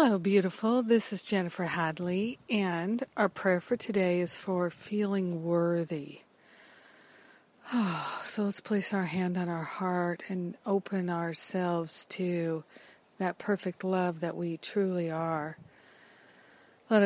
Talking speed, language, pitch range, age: 125 wpm, English, 175-195 Hz, 50-69